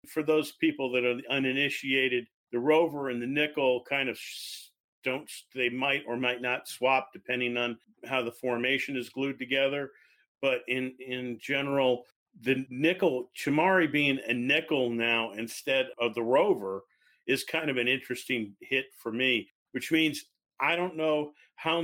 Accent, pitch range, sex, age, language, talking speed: American, 125-160 Hz, male, 40-59, English, 155 wpm